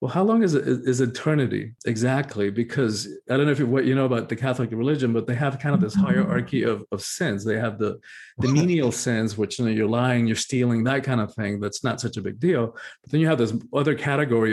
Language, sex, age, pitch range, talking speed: English, male, 40-59, 115-145 Hz, 250 wpm